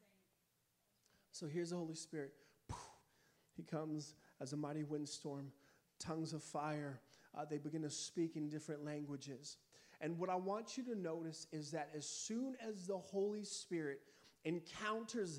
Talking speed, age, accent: 150 wpm, 30-49, American